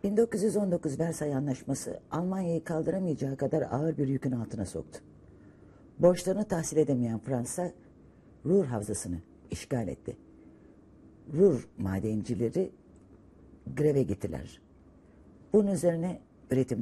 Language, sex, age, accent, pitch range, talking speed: Turkish, female, 60-79, native, 105-160 Hz, 95 wpm